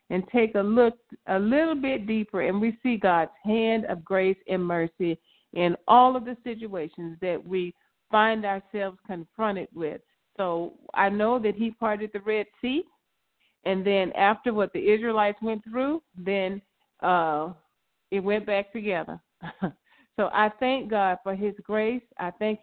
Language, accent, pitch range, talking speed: English, American, 190-230 Hz, 160 wpm